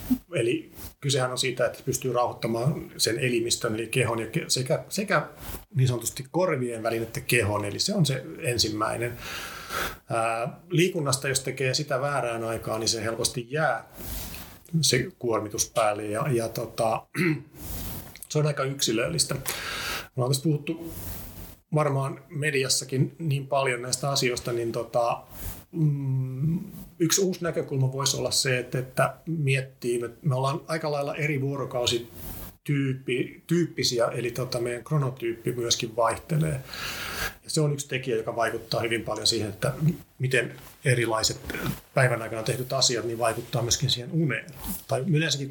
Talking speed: 135 wpm